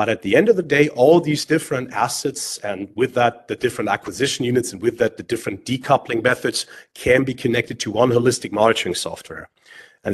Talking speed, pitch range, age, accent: 200 wpm, 115-145 Hz, 30-49, German